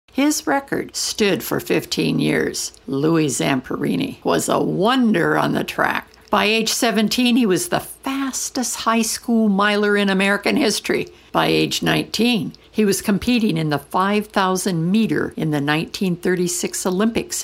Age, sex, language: 60-79, female, English